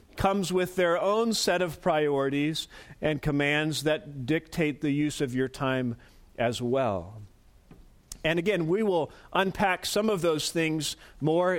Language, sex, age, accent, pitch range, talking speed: English, male, 40-59, American, 135-165 Hz, 145 wpm